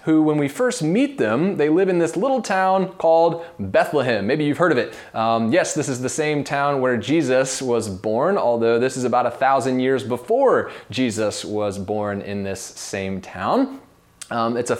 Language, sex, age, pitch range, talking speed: English, male, 20-39, 115-175 Hz, 195 wpm